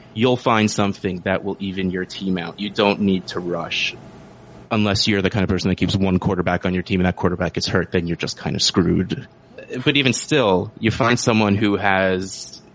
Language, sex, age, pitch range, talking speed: English, male, 30-49, 90-105 Hz, 215 wpm